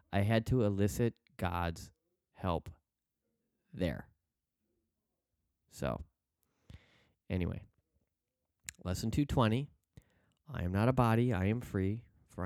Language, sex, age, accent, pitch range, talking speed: English, male, 30-49, American, 90-115 Hz, 95 wpm